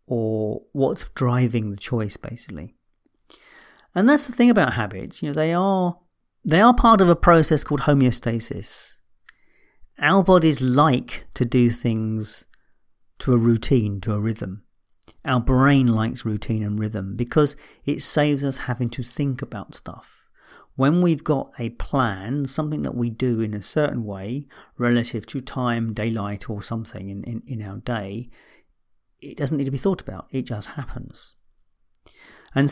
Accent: British